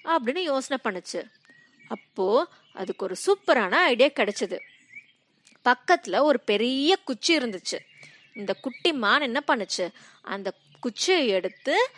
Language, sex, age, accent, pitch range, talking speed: Tamil, female, 20-39, native, 220-365 Hz, 110 wpm